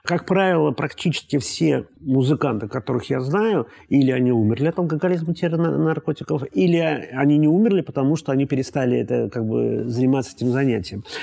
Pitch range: 125-165 Hz